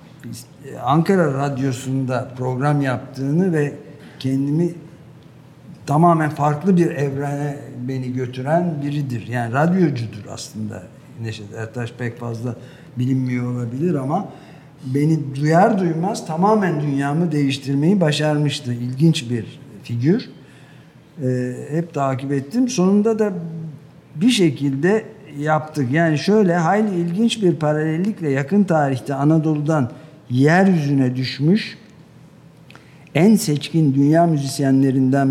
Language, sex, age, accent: Turkish, male, 50-69, native